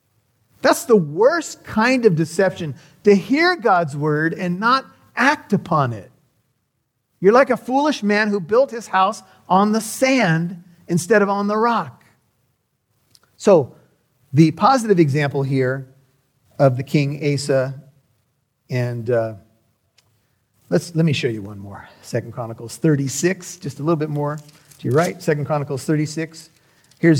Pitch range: 135-175 Hz